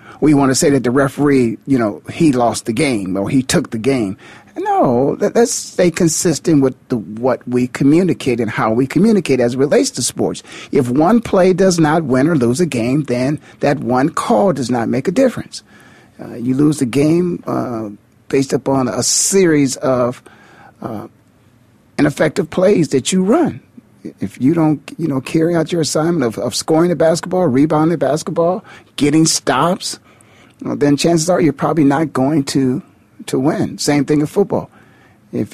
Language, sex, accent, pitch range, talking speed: English, male, American, 125-165 Hz, 180 wpm